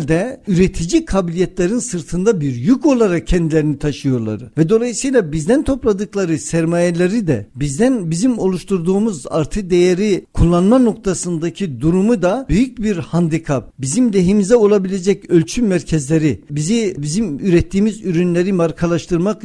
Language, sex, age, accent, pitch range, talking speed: Turkish, male, 60-79, native, 160-220 Hz, 115 wpm